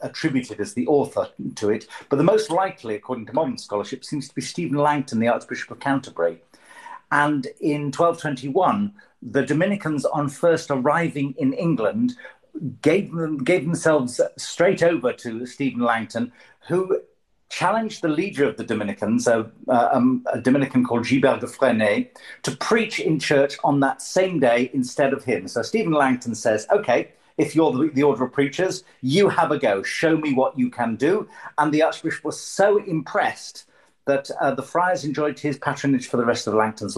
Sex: male